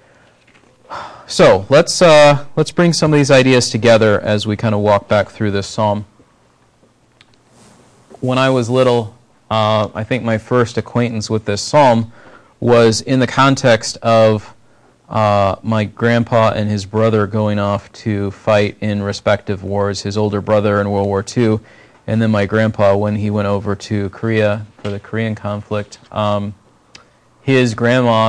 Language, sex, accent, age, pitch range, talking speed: English, male, American, 30-49, 105-130 Hz, 155 wpm